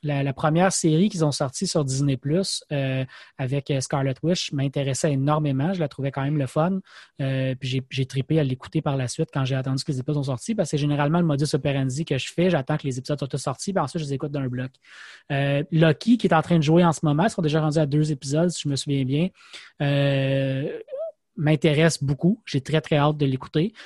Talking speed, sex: 245 wpm, male